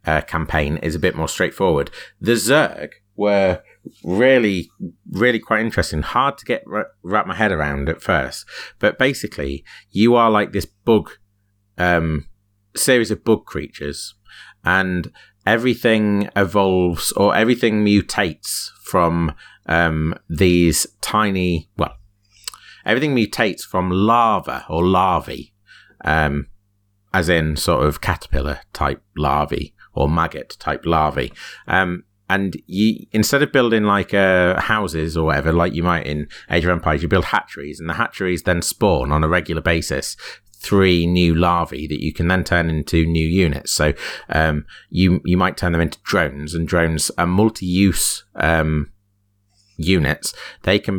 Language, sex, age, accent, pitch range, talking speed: English, male, 30-49, British, 80-100 Hz, 145 wpm